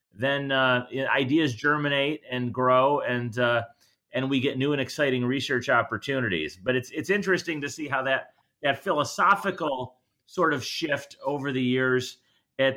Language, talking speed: English, 155 wpm